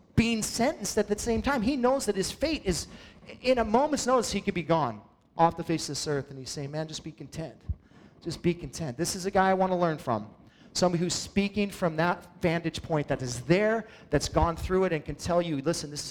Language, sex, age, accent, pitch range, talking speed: English, male, 30-49, American, 165-220 Hz, 245 wpm